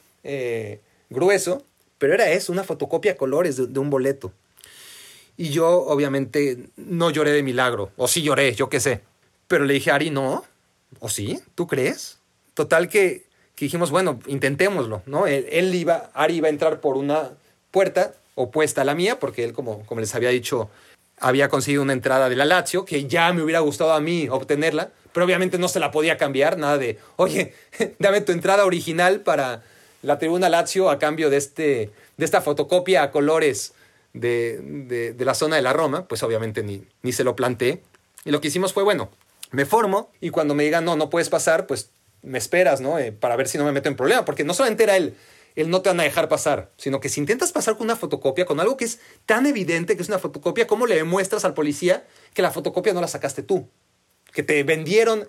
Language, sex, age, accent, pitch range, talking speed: Spanish, male, 30-49, Mexican, 140-185 Hz, 210 wpm